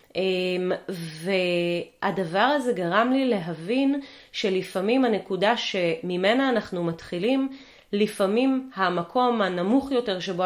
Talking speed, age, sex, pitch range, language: 85 wpm, 30-49, female, 195-255 Hz, Hebrew